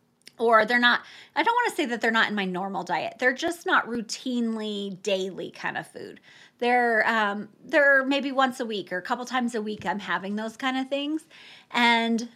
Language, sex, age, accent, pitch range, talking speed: English, female, 30-49, American, 205-250 Hz, 210 wpm